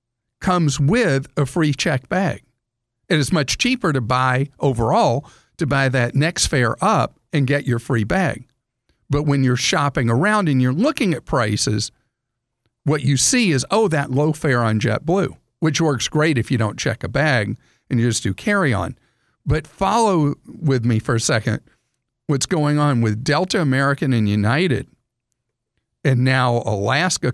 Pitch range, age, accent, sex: 120-145 Hz, 50-69, American, male